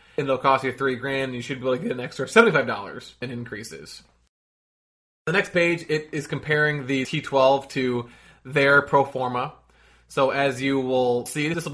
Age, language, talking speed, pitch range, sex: 20-39, English, 200 wpm, 125-145 Hz, male